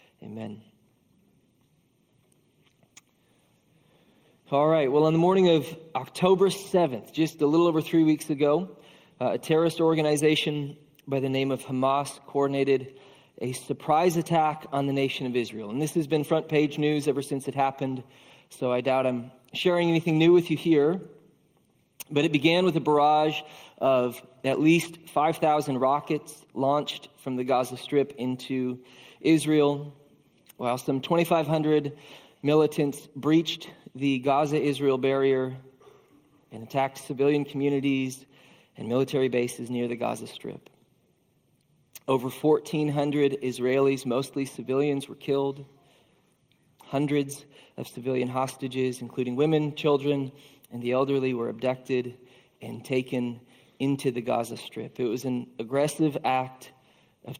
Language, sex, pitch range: English, male, 130-150 Hz